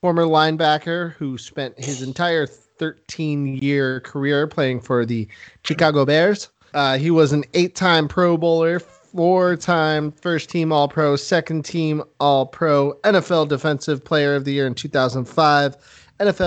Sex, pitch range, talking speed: male, 135-165 Hz, 120 wpm